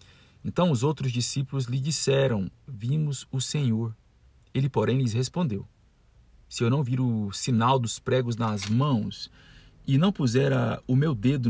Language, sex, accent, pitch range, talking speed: Portuguese, male, Brazilian, 110-135 Hz, 150 wpm